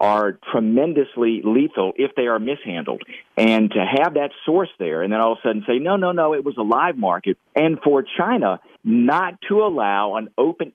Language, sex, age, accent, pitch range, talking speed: English, male, 50-69, American, 135-225 Hz, 200 wpm